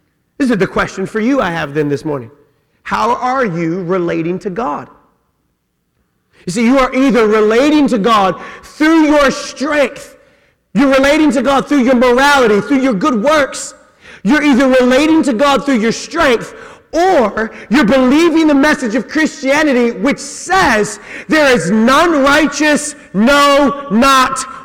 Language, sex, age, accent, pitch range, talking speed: English, male, 40-59, American, 215-295 Hz, 150 wpm